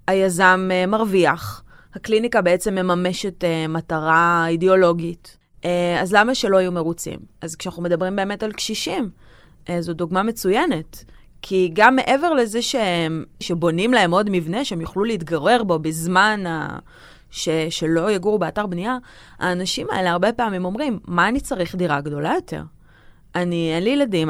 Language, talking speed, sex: Hebrew, 135 wpm, female